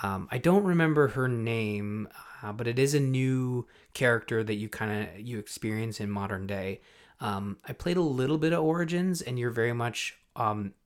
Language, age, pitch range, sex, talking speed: English, 20-39, 100-120 Hz, male, 195 wpm